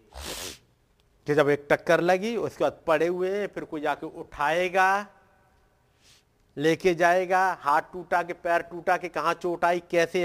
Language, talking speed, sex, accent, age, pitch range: Hindi, 145 wpm, male, native, 50-69, 155-205 Hz